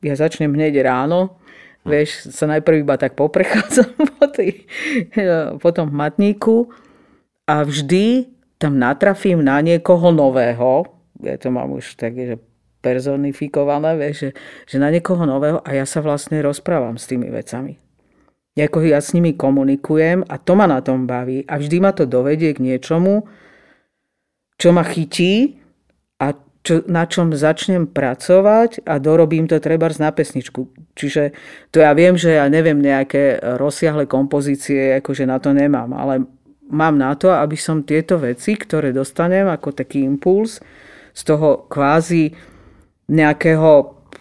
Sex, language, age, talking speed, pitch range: female, Slovak, 50-69, 145 wpm, 140-170 Hz